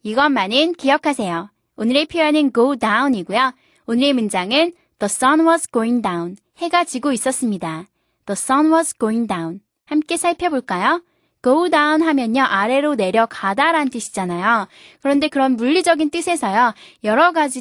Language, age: Korean, 20-39